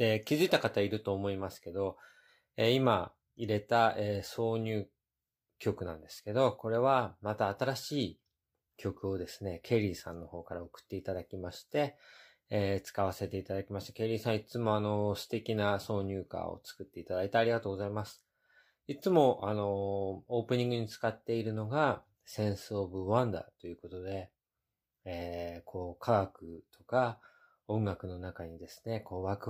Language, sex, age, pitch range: Japanese, male, 20-39, 95-125 Hz